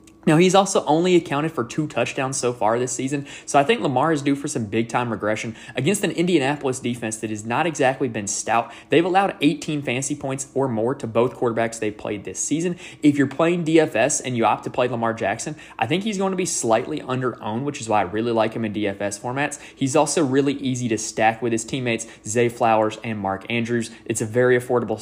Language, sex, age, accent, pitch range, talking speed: English, male, 20-39, American, 115-150 Hz, 225 wpm